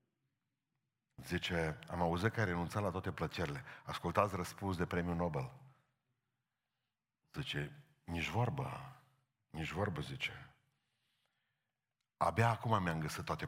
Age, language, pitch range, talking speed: 50-69, Romanian, 110-155 Hz, 110 wpm